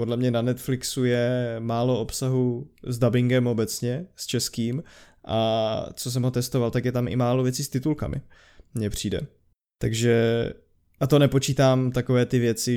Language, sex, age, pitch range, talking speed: Czech, male, 20-39, 115-125 Hz, 160 wpm